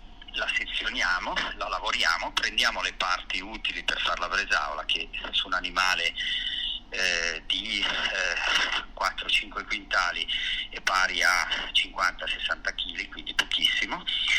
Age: 40-59